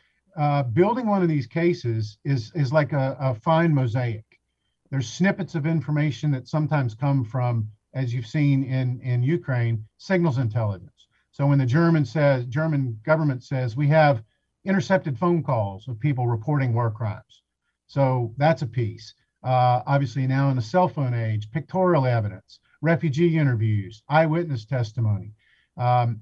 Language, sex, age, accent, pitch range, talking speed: English, male, 50-69, American, 125-160 Hz, 150 wpm